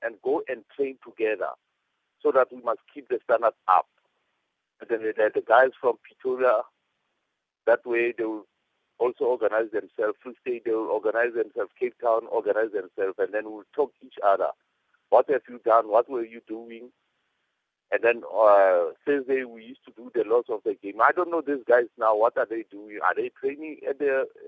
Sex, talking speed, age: male, 195 wpm, 50-69